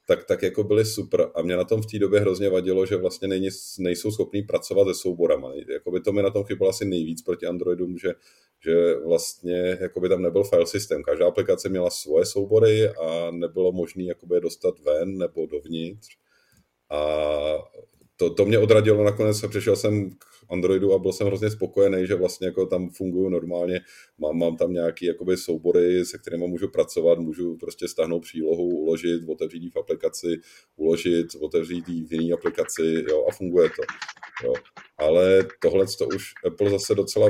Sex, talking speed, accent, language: male, 170 wpm, native, Czech